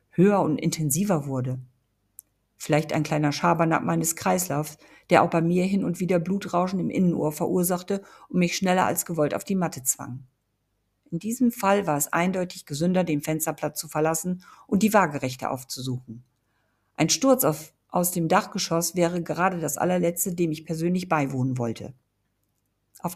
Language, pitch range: German, 145-185 Hz